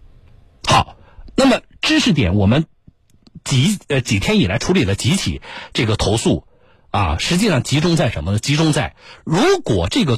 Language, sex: Chinese, male